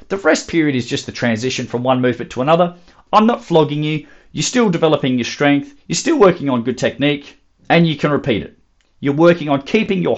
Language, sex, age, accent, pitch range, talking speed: English, male, 40-59, Australian, 130-165 Hz, 220 wpm